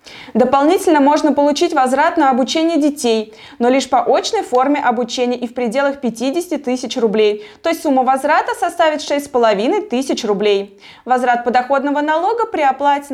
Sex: female